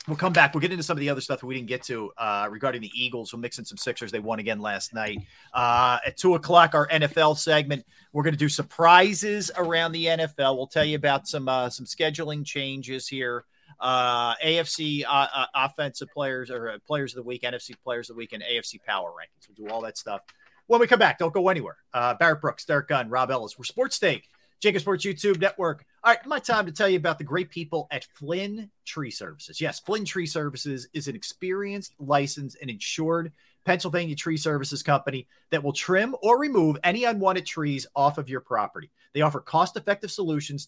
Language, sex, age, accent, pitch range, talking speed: English, male, 40-59, American, 130-170 Hz, 215 wpm